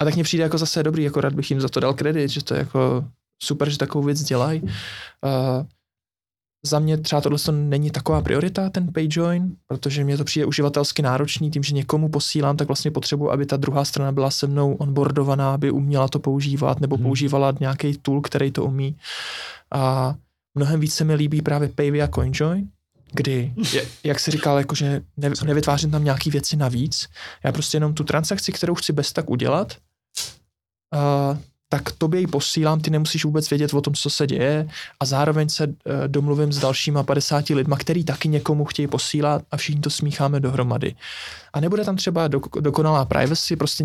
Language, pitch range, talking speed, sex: Czech, 140-155 Hz, 190 wpm, male